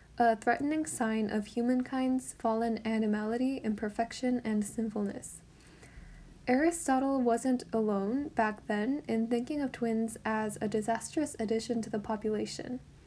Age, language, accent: 10-29, English, American